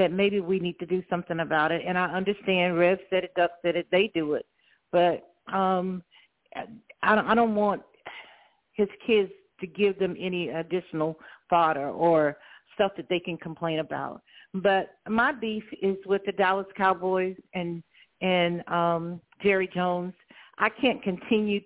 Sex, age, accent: female, 50-69, American